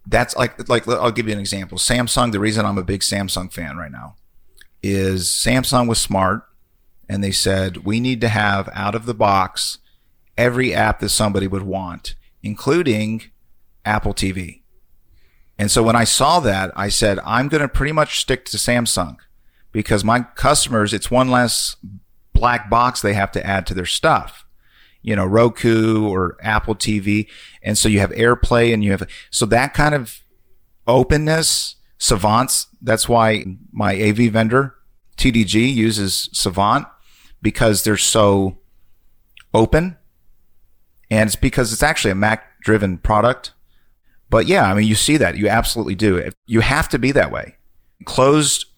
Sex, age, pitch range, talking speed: male, 40-59, 95-120 Hz, 160 wpm